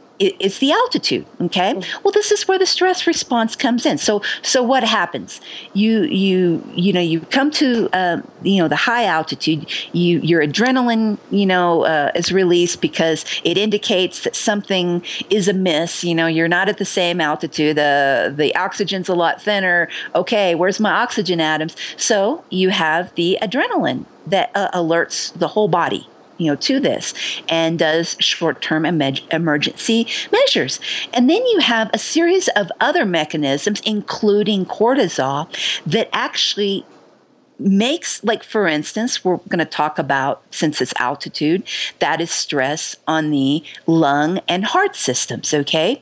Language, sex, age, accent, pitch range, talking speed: English, female, 50-69, American, 165-230 Hz, 155 wpm